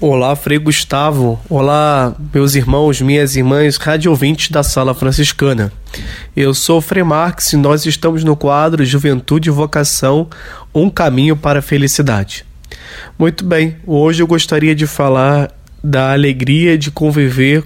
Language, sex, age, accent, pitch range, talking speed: Portuguese, male, 20-39, Brazilian, 130-155 Hz, 140 wpm